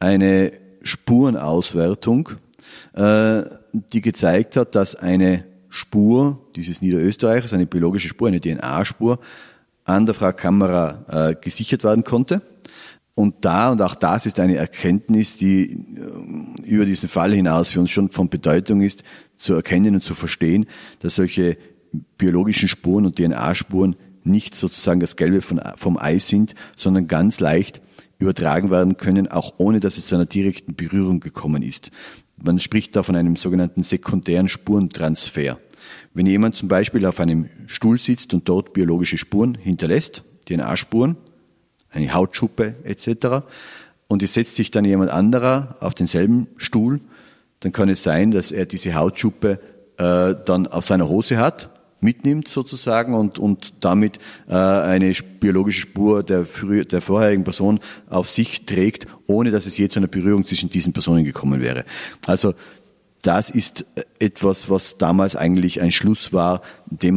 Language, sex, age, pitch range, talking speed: German, male, 40-59, 90-110 Hz, 145 wpm